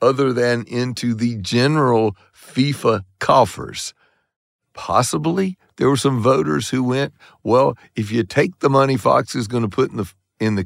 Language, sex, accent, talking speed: English, male, American, 165 wpm